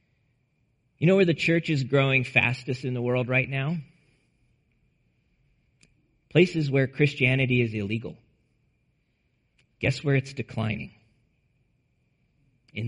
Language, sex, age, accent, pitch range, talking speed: English, male, 40-59, American, 130-165 Hz, 105 wpm